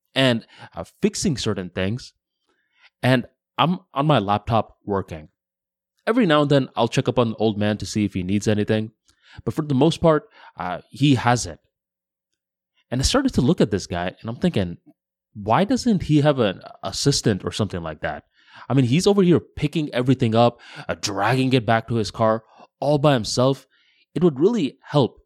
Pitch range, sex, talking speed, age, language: 105-140 Hz, male, 190 wpm, 20-39, English